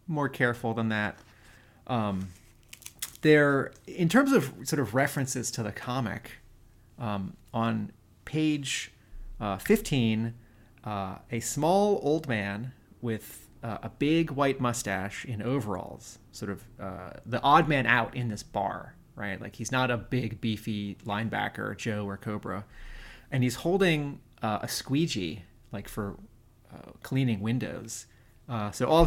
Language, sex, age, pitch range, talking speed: English, male, 30-49, 105-130 Hz, 140 wpm